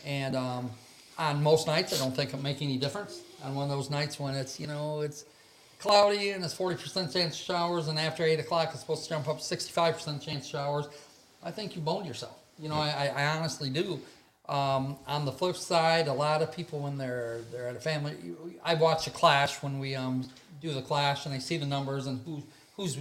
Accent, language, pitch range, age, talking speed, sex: American, English, 140-165 Hz, 40-59, 225 wpm, male